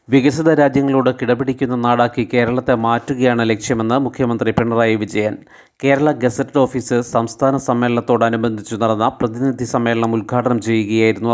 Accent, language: native, Malayalam